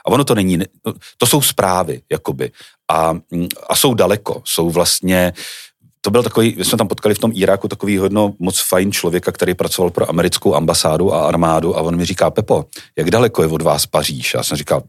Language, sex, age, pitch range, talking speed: Czech, male, 40-59, 80-95 Hz, 200 wpm